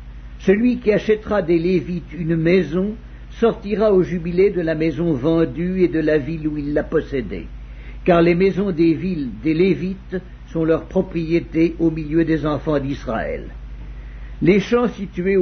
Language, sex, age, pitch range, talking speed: English, male, 60-79, 135-180 Hz, 155 wpm